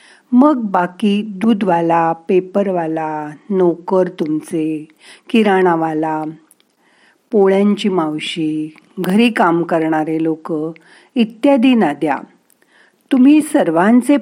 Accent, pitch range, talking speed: native, 175-250 Hz, 75 wpm